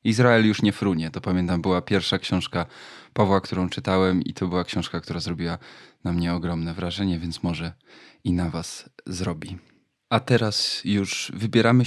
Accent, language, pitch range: native, Polish, 95-120 Hz